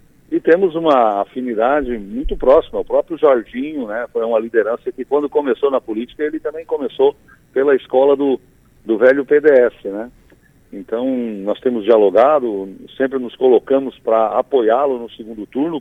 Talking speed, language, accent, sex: 150 wpm, Portuguese, Brazilian, male